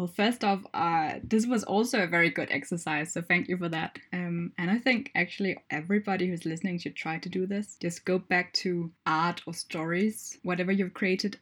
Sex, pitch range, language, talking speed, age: female, 165-200 Hz, English, 200 wpm, 10-29